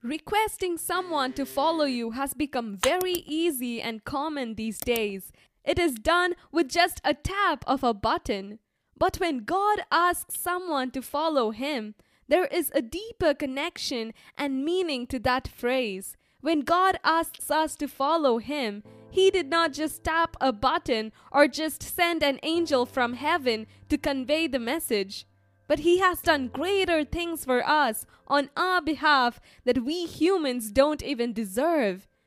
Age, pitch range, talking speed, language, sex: 10-29, 255-340 Hz, 155 wpm, English, female